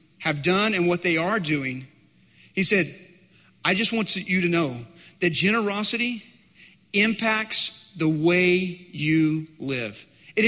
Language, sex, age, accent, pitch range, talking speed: English, male, 30-49, American, 165-215 Hz, 130 wpm